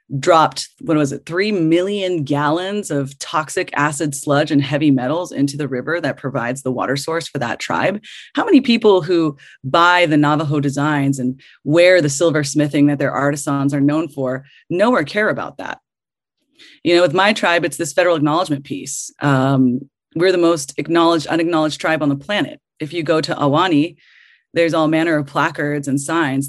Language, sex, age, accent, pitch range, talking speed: English, female, 30-49, American, 140-185 Hz, 180 wpm